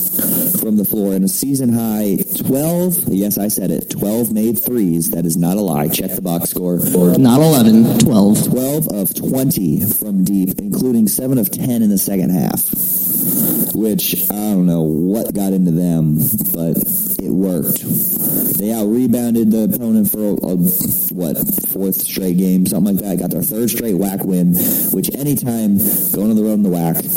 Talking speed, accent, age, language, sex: 180 wpm, American, 30-49, English, male